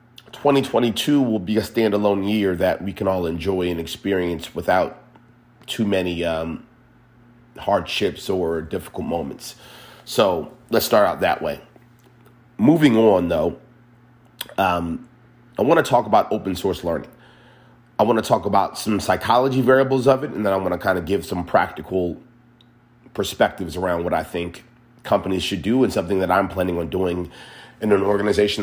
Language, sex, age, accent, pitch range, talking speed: English, male, 30-49, American, 95-120 Hz, 160 wpm